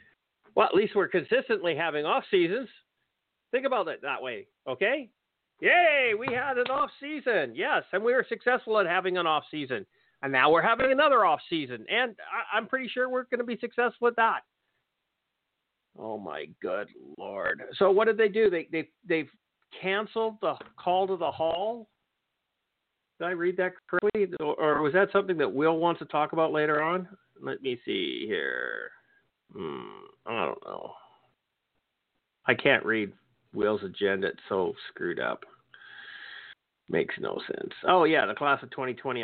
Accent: American